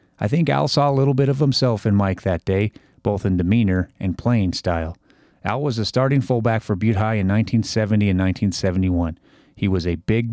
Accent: American